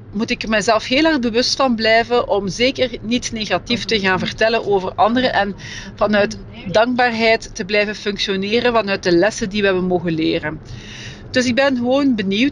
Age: 40-59